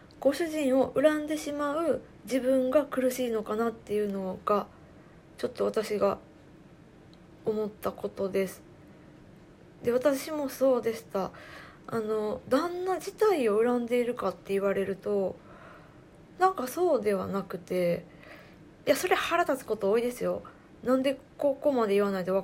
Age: 20-39